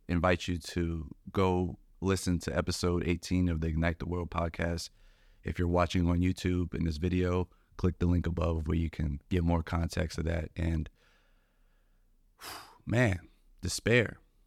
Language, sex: English, male